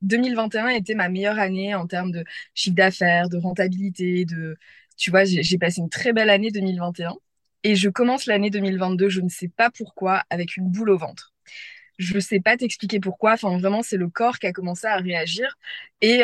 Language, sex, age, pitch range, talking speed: French, female, 20-39, 180-210 Hz, 205 wpm